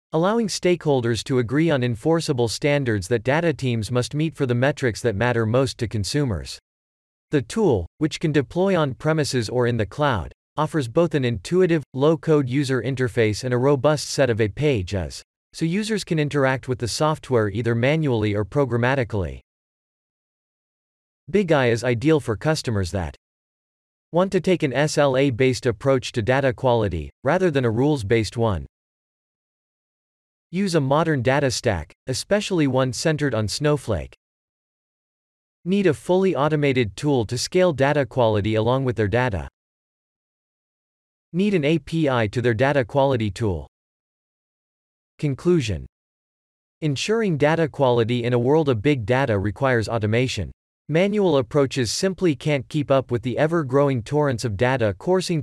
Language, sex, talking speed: English, male, 145 wpm